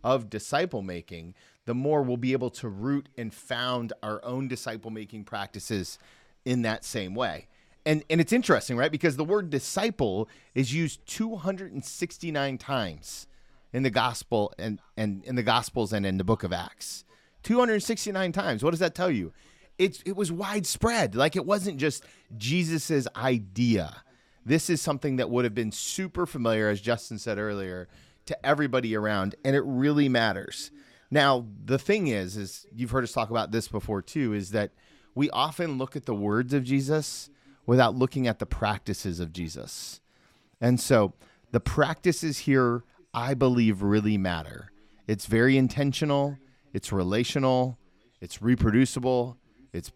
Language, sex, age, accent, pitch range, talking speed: English, male, 30-49, American, 105-145 Hz, 160 wpm